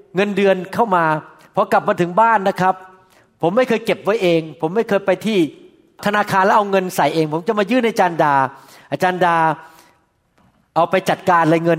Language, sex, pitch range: Thai, male, 165-215 Hz